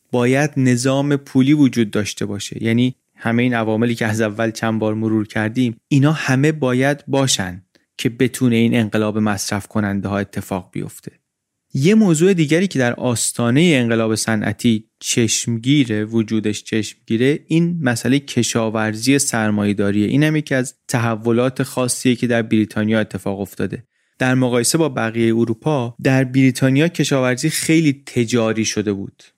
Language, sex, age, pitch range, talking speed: Persian, male, 30-49, 110-135 Hz, 135 wpm